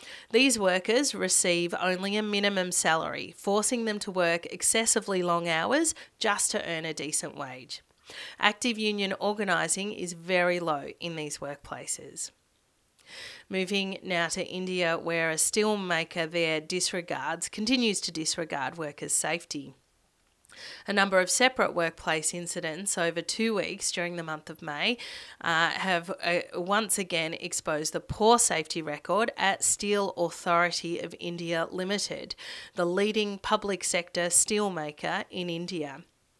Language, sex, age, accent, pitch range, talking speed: English, female, 30-49, Australian, 170-205 Hz, 130 wpm